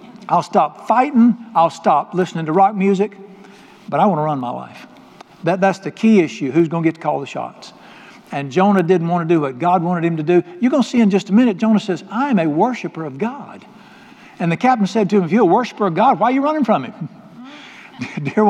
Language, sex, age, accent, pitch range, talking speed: English, male, 60-79, American, 160-220 Hz, 245 wpm